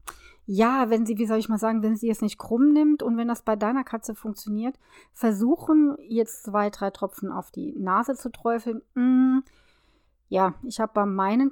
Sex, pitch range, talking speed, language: female, 205-255 Hz, 190 wpm, German